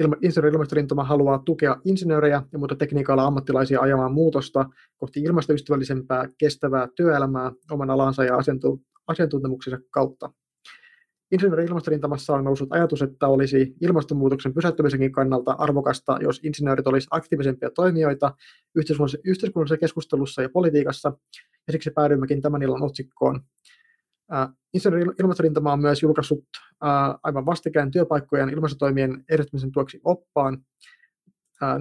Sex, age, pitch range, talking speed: male, 30-49, 135-155 Hz, 115 wpm